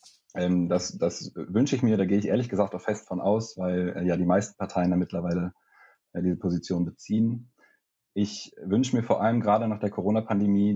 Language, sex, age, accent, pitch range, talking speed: German, male, 30-49, German, 90-100 Hz, 185 wpm